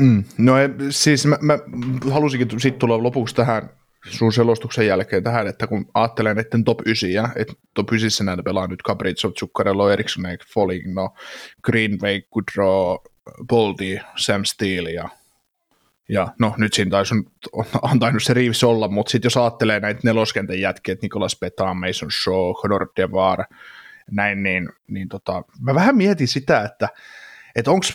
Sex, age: male, 20-39